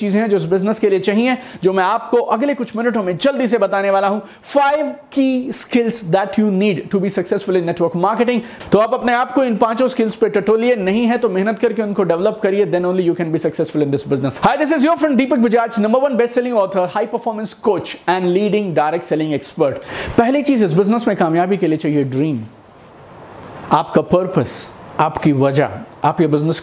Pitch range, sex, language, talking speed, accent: 145-210 Hz, male, Hindi, 90 wpm, native